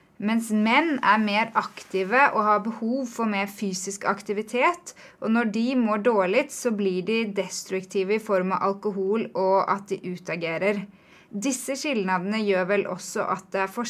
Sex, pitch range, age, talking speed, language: female, 195-240 Hz, 20-39, 160 wpm, Swedish